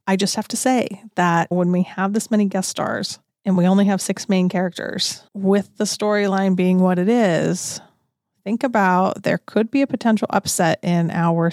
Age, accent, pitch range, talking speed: 30-49, American, 185-225 Hz, 195 wpm